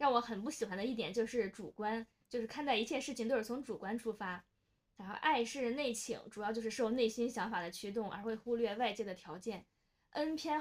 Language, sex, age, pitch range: Chinese, female, 20-39, 210-245 Hz